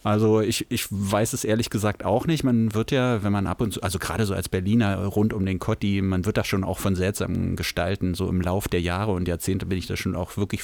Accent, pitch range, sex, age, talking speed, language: German, 90-120 Hz, male, 30-49, 265 wpm, German